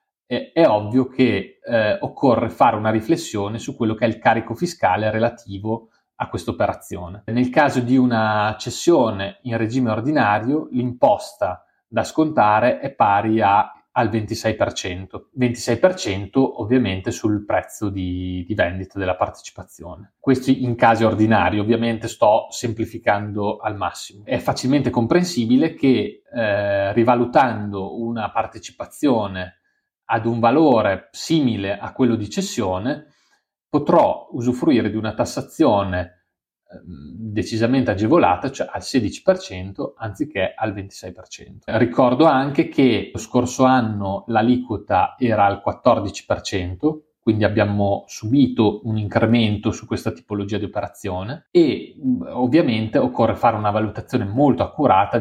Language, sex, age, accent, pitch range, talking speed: Italian, male, 30-49, native, 105-125 Hz, 120 wpm